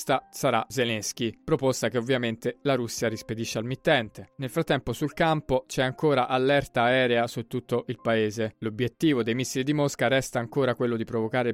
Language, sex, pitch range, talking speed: Italian, male, 115-135 Hz, 170 wpm